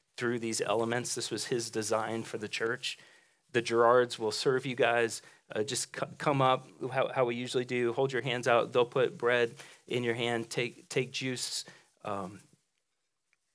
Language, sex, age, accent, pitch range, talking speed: English, male, 40-59, American, 110-130 Hz, 175 wpm